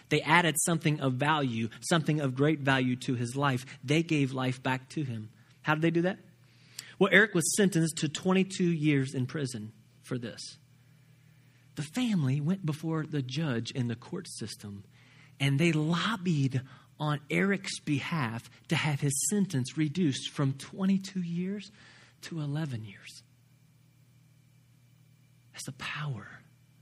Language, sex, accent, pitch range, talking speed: English, male, American, 125-150 Hz, 145 wpm